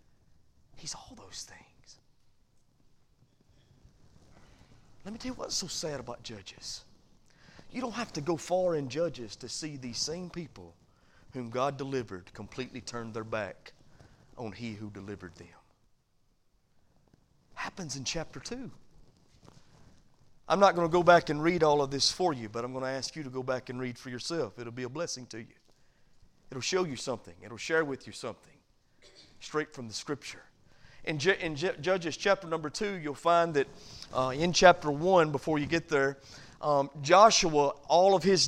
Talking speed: 170 wpm